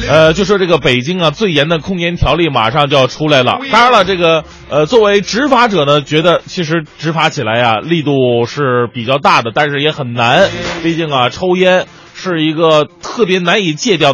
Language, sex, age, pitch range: Chinese, male, 20-39, 145-195 Hz